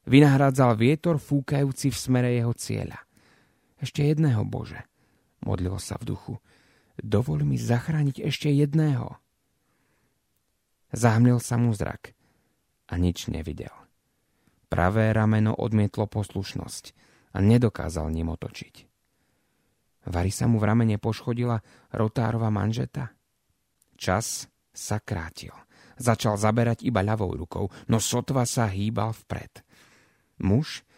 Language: Slovak